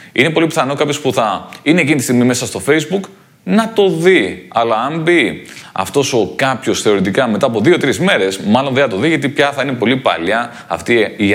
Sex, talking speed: male, 210 wpm